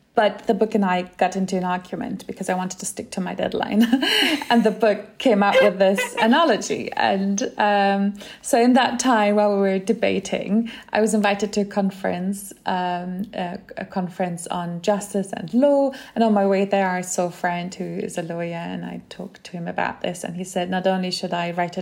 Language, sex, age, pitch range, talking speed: English, female, 30-49, 185-210 Hz, 210 wpm